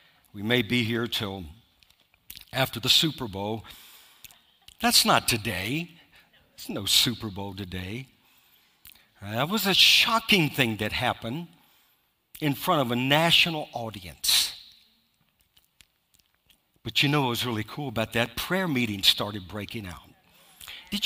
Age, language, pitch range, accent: 60-79, English, 115-175 Hz, American